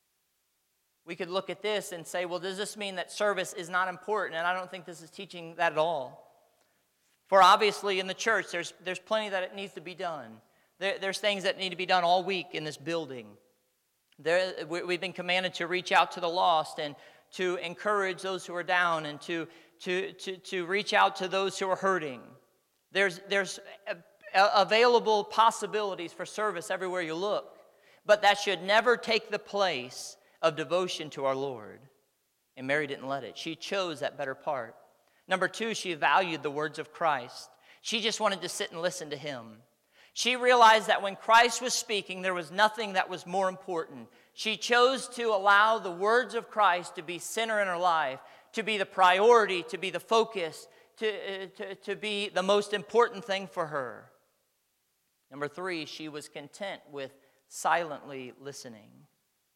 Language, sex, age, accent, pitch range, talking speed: English, male, 40-59, American, 165-205 Hz, 185 wpm